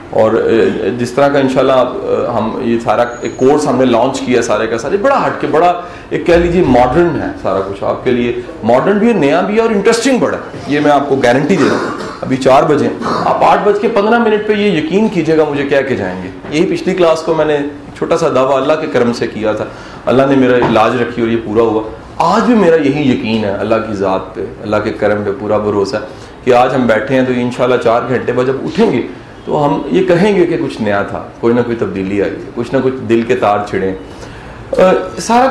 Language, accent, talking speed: English, Indian, 160 wpm